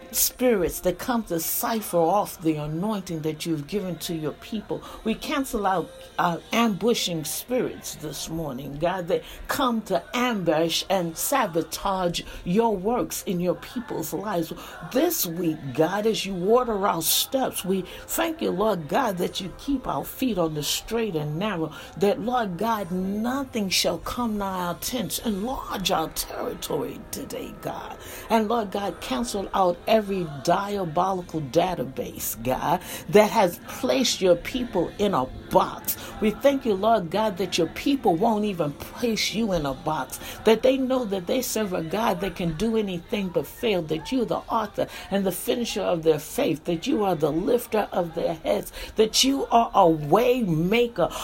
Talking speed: 165 wpm